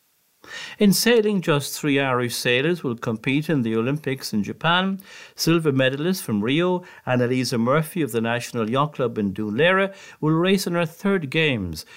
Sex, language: male, English